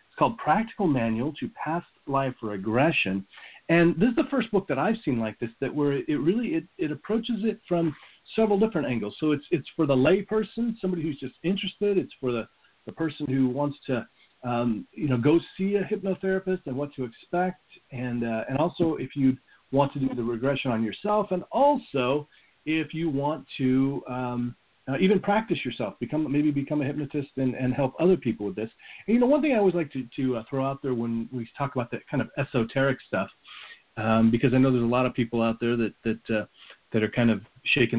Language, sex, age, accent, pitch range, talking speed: English, male, 40-59, American, 120-175 Hz, 220 wpm